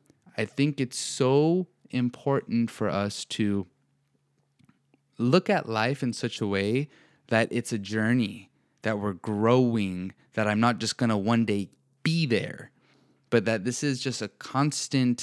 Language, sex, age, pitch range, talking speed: English, male, 20-39, 105-125 Hz, 155 wpm